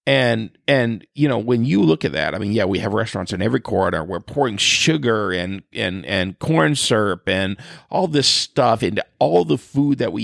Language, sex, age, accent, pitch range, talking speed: English, male, 40-59, American, 105-130 Hz, 210 wpm